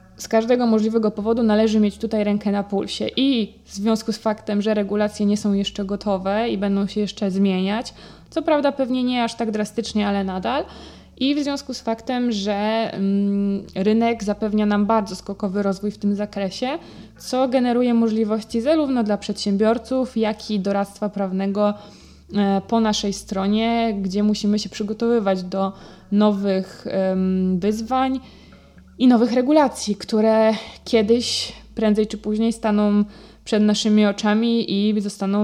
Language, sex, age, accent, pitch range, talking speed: Polish, female, 20-39, native, 200-225 Hz, 140 wpm